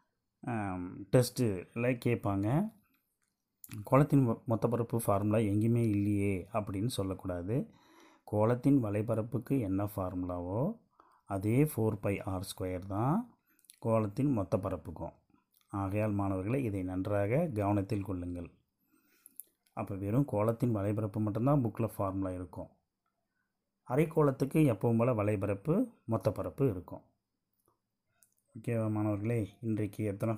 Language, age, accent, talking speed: Tamil, 30-49, native, 95 wpm